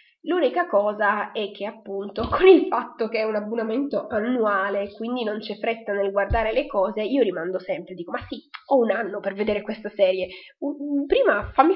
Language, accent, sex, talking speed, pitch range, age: Italian, native, female, 185 wpm, 195-250 Hz, 20-39